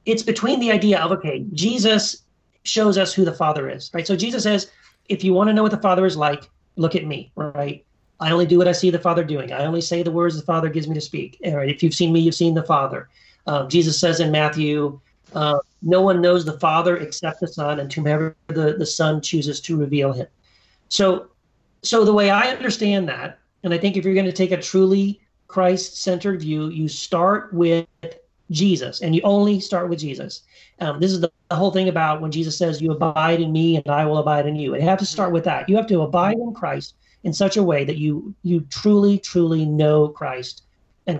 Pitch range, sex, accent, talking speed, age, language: 155-190 Hz, male, American, 235 wpm, 40-59, English